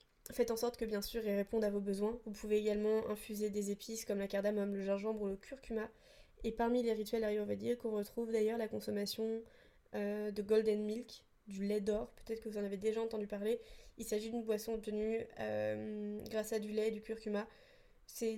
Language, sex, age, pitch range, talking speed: French, female, 20-39, 210-235 Hz, 210 wpm